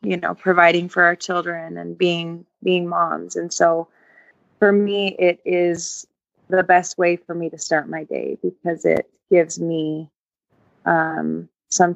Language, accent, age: English, American, 20-39